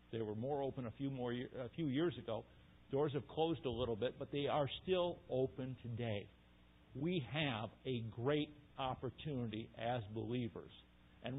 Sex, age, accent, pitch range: male, 50-69, American, 110-135 Hz